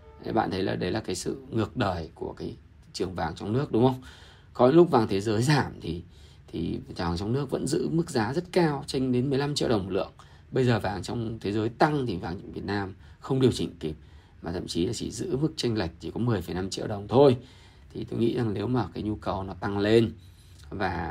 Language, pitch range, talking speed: Vietnamese, 95-150 Hz, 240 wpm